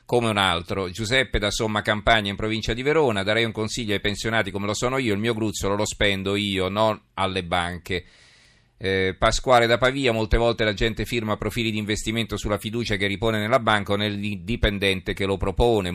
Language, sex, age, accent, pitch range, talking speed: Italian, male, 40-59, native, 95-110 Hz, 195 wpm